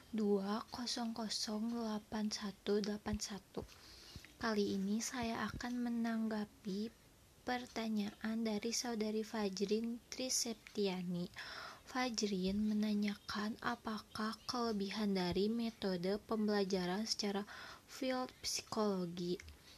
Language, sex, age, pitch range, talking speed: Indonesian, female, 20-39, 200-225 Hz, 65 wpm